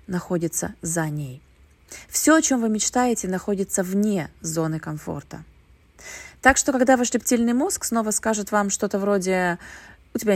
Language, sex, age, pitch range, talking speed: Russian, female, 20-39, 170-240 Hz, 145 wpm